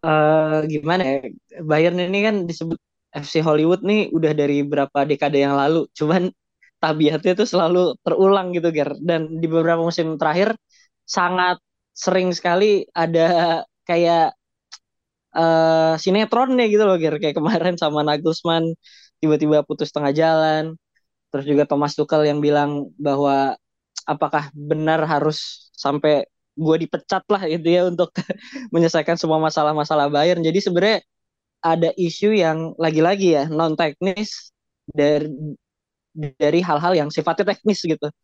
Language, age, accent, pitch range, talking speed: Indonesian, 20-39, native, 145-170 Hz, 130 wpm